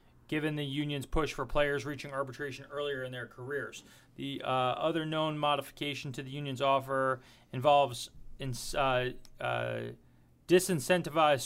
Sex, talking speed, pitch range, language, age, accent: male, 135 wpm, 130-150 Hz, English, 30-49, American